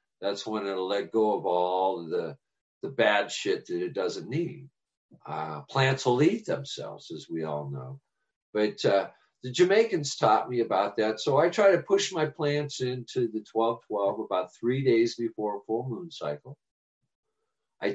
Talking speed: 175 wpm